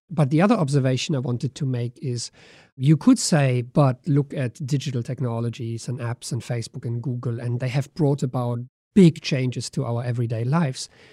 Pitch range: 125-155 Hz